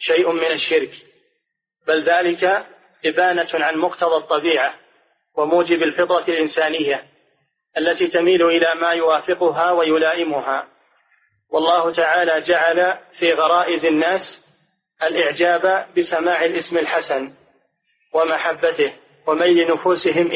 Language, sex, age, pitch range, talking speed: Arabic, male, 40-59, 165-180 Hz, 90 wpm